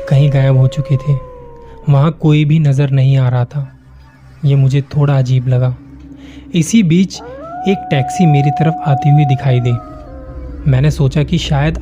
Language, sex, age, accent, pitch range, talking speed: Hindi, male, 20-39, native, 135-160 Hz, 160 wpm